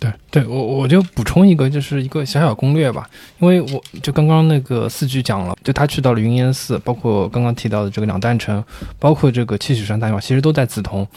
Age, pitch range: 20-39, 110-145 Hz